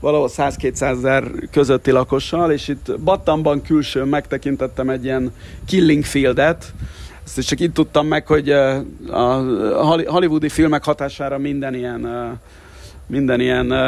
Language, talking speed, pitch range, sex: Hungarian, 115 wpm, 130-155 Hz, male